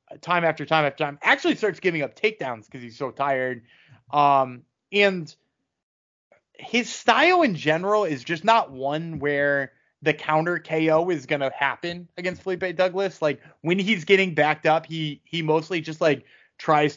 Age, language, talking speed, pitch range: 20-39, English, 165 wpm, 140-190 Hz